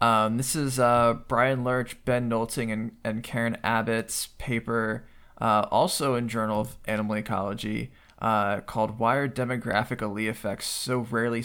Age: 20-39